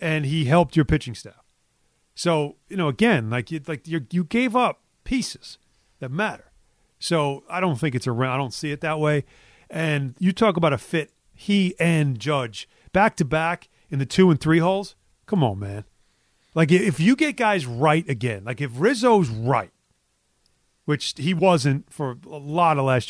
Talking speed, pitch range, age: 180 wpm, 140-180 Hz, 40-59